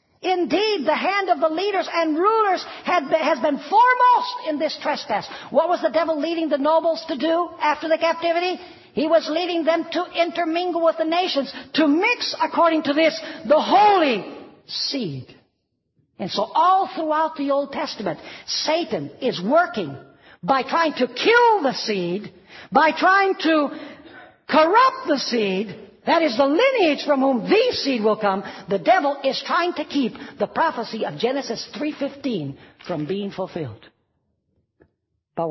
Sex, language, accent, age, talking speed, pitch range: female, English, American, 60-79, 150 wpm, 200-335 Hz